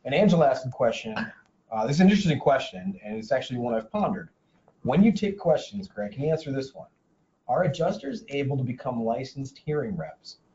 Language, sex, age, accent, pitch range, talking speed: English, male, 30-49, American, 115-170 Hz, 200 wpm